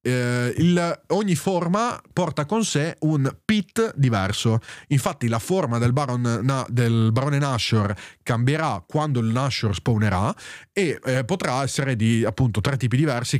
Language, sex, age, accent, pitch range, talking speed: Italian, male, 30-49, native, 110-135 Hz, 150 wpm